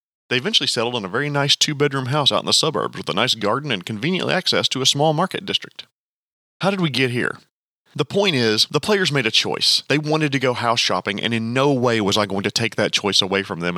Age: 30-49